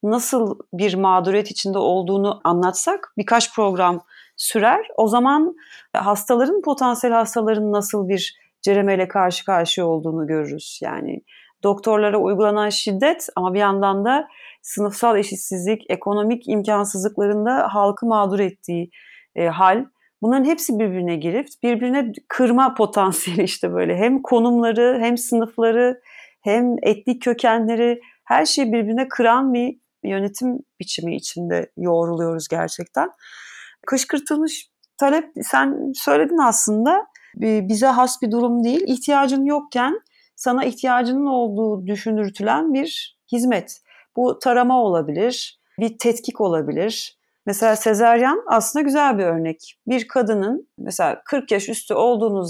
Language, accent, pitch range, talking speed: Turkish, native, 200-255 Hz, 115 wpm